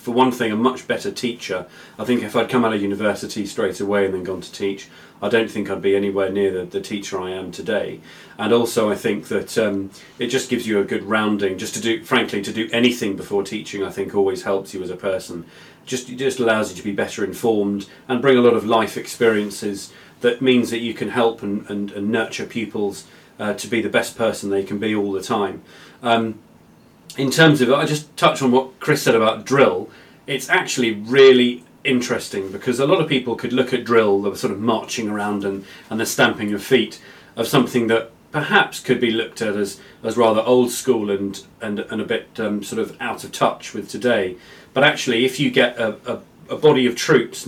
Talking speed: 225 wpm